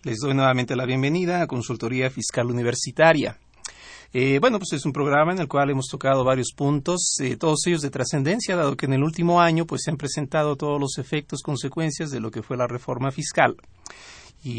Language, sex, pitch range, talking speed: Spanish, male, 135-170 Hz, 200 wpm